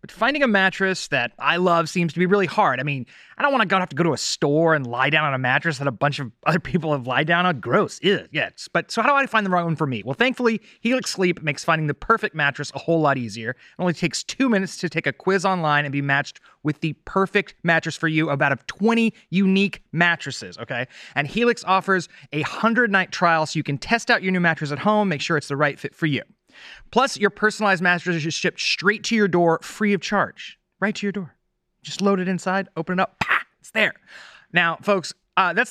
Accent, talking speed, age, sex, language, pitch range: American, 245 wpm, 30-49, male, English, 150-200 Hz